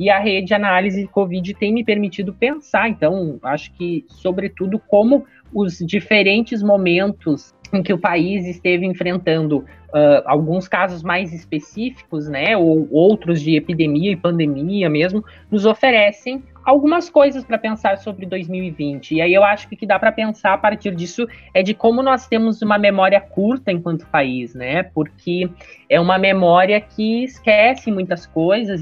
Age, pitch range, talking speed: 20-39, 175-225 Hz, 160 wpm